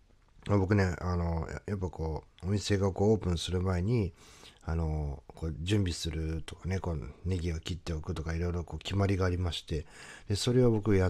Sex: male